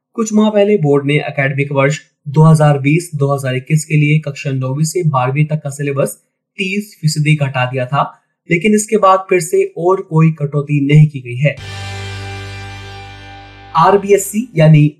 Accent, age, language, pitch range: native, 30-49, Hindi, 135-175 Hz